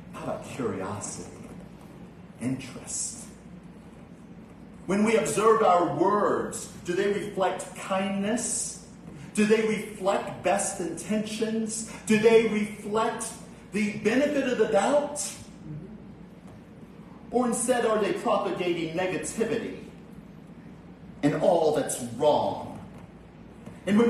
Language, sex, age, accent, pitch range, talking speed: English, male, 40-59, American, 180-225 Hz, 95 wpm